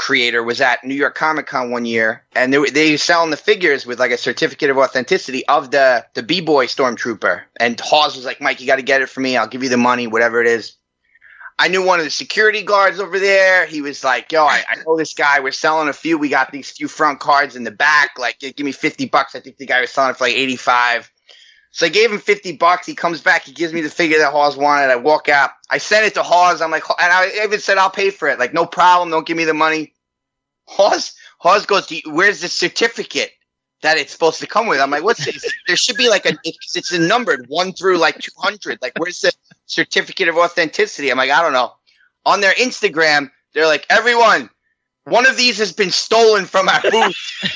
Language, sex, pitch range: English, male, 135-205 Hz